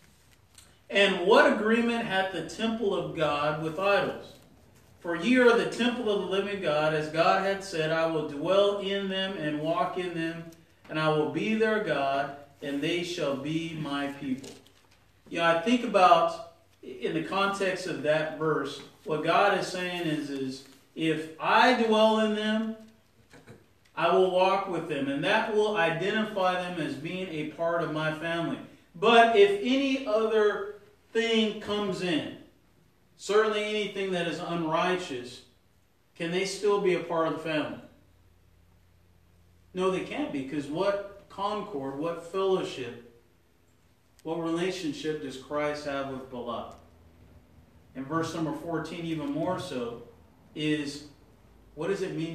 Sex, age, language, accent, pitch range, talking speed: male, 40-59, English, American, 130-195 Hz, 150 wpm